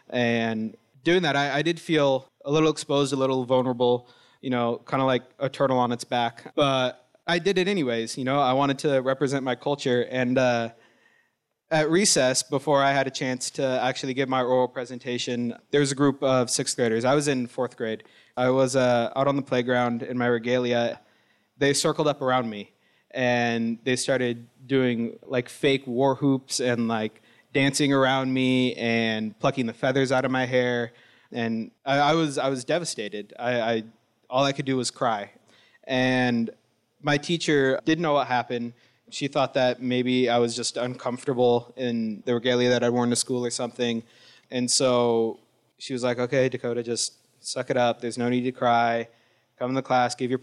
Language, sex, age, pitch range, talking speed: English, male, 20-39, 120-135 Hz, 190 wpm